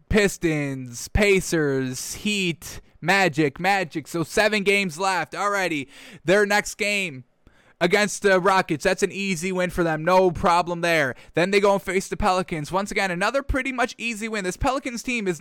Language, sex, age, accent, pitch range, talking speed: English, male, 10-29, American, 155-185 Hz, 165 wpm